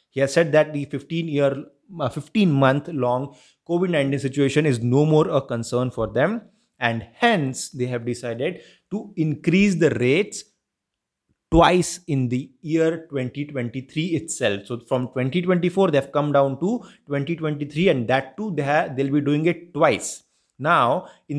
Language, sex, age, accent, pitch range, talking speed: English, male, 30-49, Indian, 135-170 Hz, 150 wpm